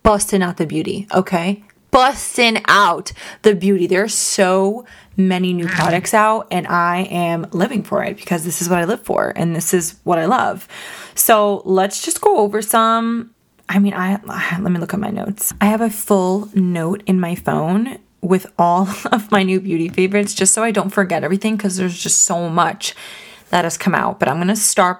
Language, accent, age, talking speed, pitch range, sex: English, American, 20-39, 205 wpm, 175-215 Hz, female